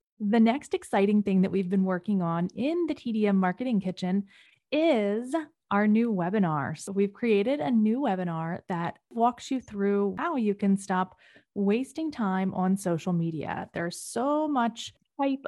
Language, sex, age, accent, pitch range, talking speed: English, female, 20-39, American, 185-240 Hz, 160 wpm